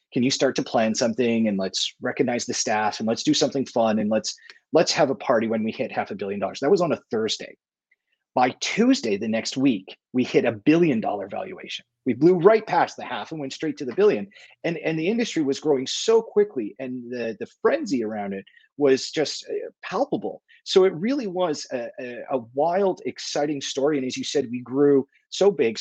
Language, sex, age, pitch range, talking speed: English, male, 30-49, 120-190 Hz, 210 wpm